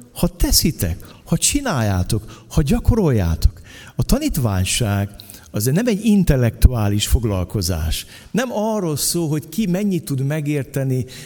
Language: Hungarian